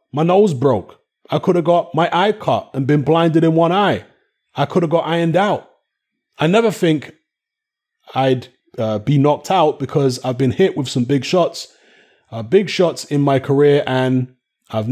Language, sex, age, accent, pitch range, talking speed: English, male, 30-49, British, 130-170 Hz, 185 wpm